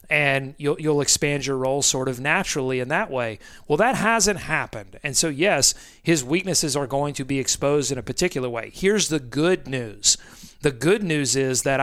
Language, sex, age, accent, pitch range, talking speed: English, male, 40-59, American, 140-180 Hz, 200 wpm